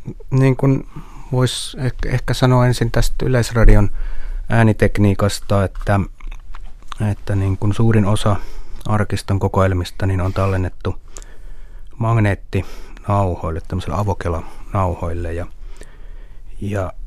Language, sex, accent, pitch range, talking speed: Finnish, male, native, 90-105 Hz, 90 wpm